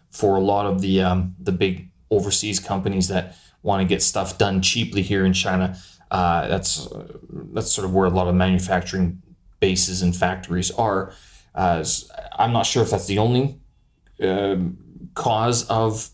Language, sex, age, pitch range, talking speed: English, male, 30-49, 95-115 Hz, 165 wpm